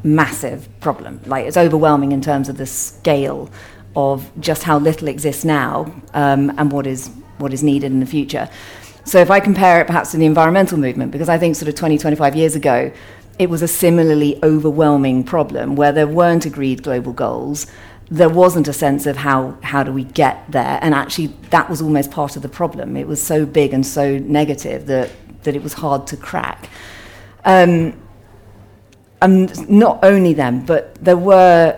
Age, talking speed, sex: 40-59, 185 wpm, female